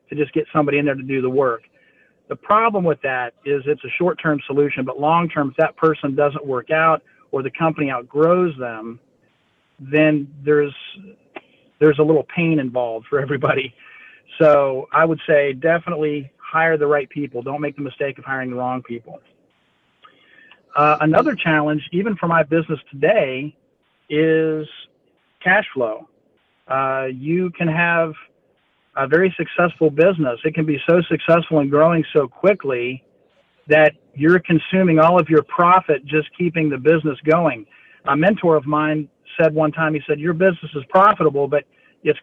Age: 40-59